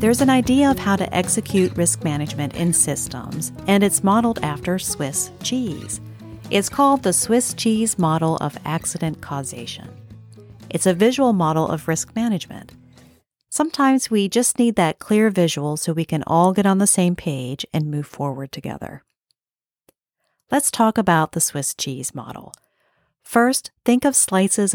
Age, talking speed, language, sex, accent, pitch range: 40-59, 155 wpm, English, female, American, 150-205 Hz